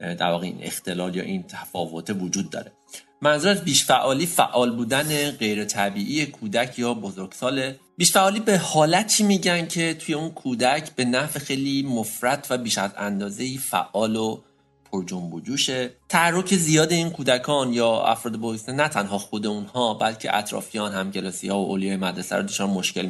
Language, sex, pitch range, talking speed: Persian, male, 95-125 Hz, 150 wpm